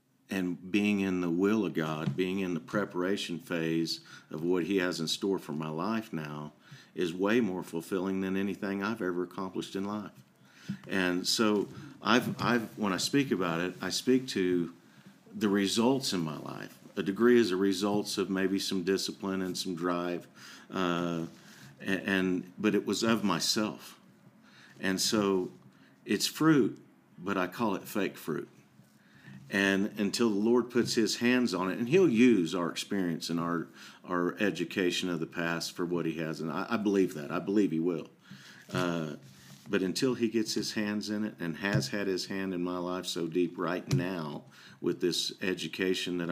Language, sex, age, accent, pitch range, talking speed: English, male, 50-69, American, 85-100 Hz, 180 wpm